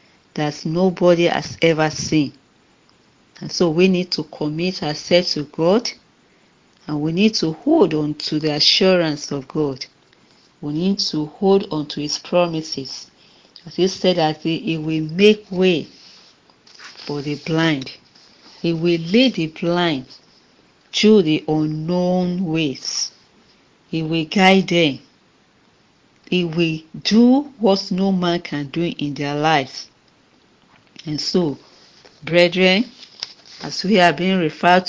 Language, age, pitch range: English, 50-69, 155-185 Hz